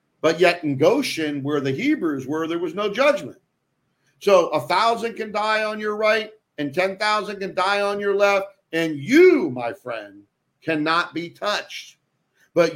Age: 50-69